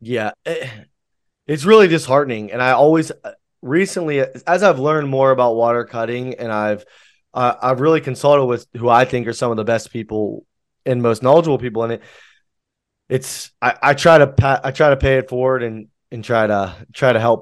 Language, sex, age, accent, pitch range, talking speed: English, male, 20-39, American, 110-145 Hz, 190 wpm